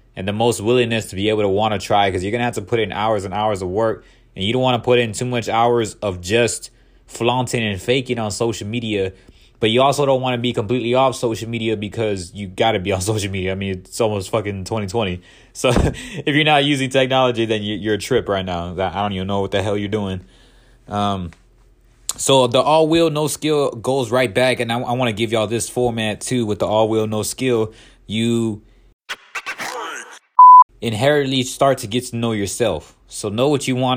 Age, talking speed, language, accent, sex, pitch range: 20-39, 225 wpm, English, American, male, 105-125 Hz